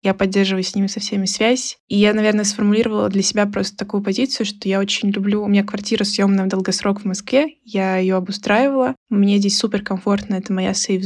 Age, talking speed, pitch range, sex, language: 20-39, 200 wpm, 195-220 Hz, female, Russian